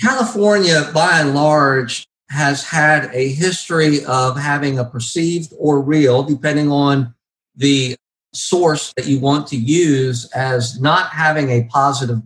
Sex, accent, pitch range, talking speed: male, American, 125-150 Hz, 135 wpm